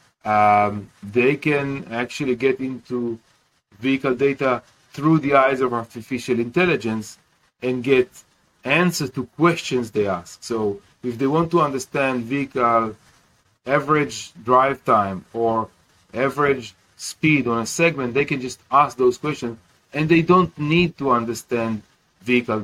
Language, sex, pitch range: English, male, 115-140 Hz